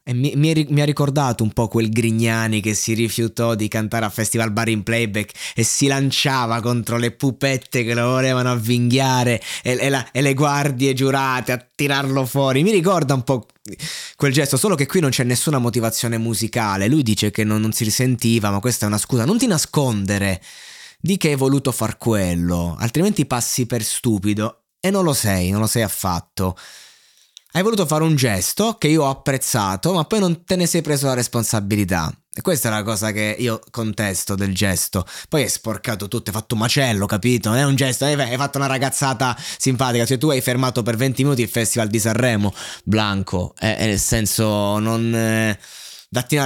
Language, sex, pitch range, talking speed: Italian, male, 110-135 Hz, 200 wpm